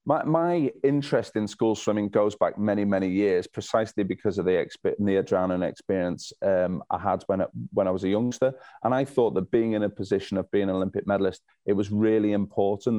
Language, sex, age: English, male, 30-49